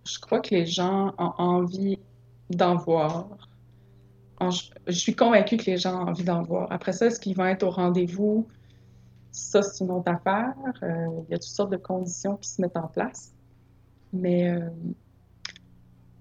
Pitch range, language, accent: 170-195 Hz, French, Canadian